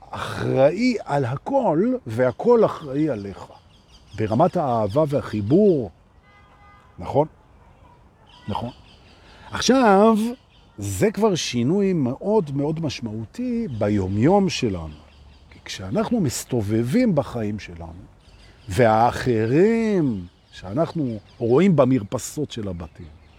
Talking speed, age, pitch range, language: 80 wpm, 50-69, 100-165 Hz, Hebrew